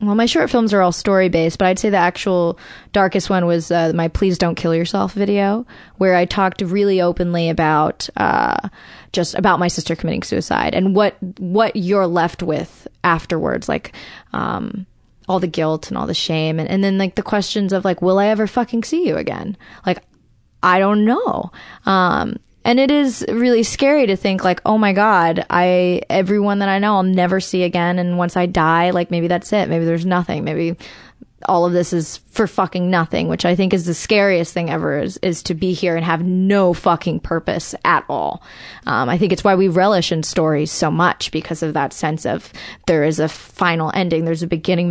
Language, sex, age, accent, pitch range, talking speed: English, female, 20-39, American, 170-195 Hz, 205 wpm